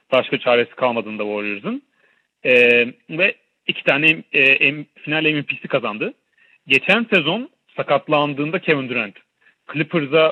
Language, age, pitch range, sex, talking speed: Turkish, 40-59, 135-170 Hz, male, 105 wpm